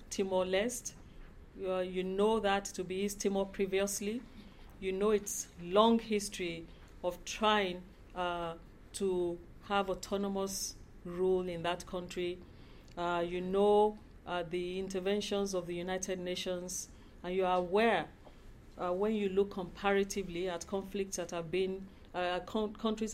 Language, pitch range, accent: English, 175-200 Hz, Nigerian